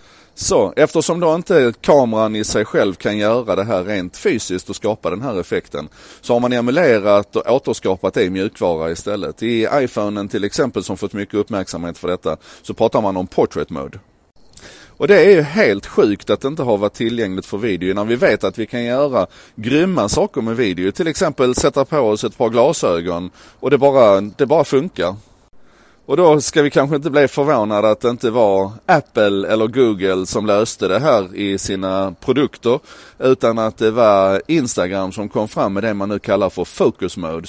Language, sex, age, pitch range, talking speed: Swedish, male, 30-49, 95-125 Hz, 195 wpm